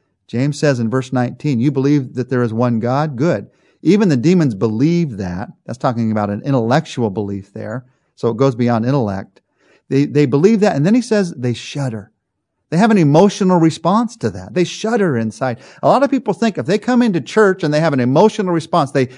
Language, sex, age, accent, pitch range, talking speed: English, male, 40-59, American, 120-160 Hz, 210 wpm